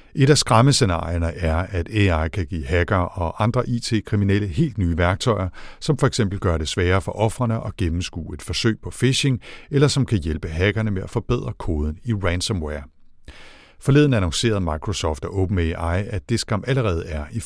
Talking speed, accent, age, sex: 170 wpm, native, 60-79, male